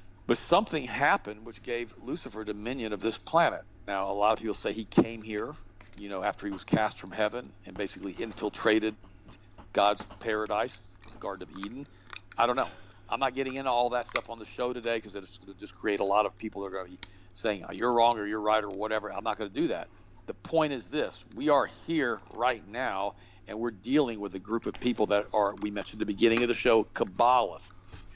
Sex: male